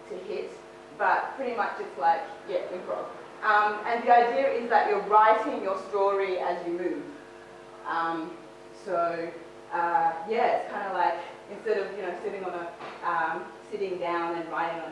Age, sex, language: 20-39, female, English